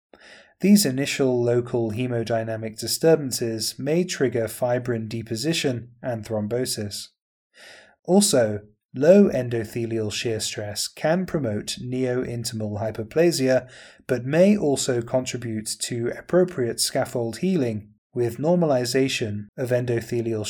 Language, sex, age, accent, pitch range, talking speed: English, male, 30-49, British, 110-135 Hz, 95 wpm